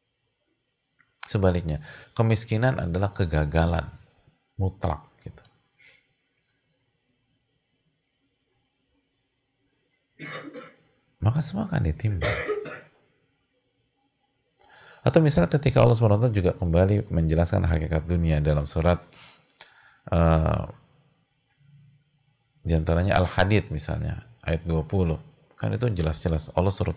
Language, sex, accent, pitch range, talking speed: English, male, Indonesian, 85-130 Hz, 75 wpm